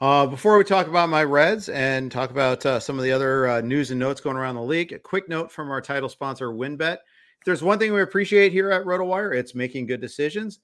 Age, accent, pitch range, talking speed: 40-59, American, 130-180 Hz, 250 wpm